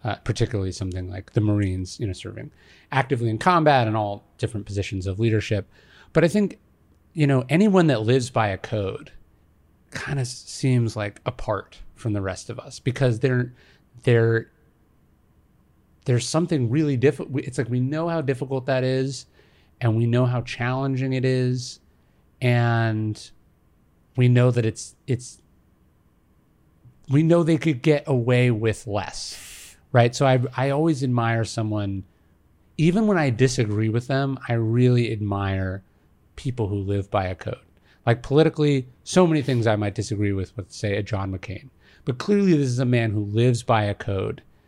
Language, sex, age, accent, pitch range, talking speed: English, male, 30-49, American, 100-130 Hz, 165 wpm